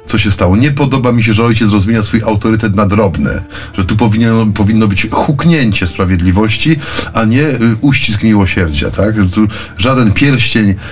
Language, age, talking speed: Polish, 30-49, 165 wpm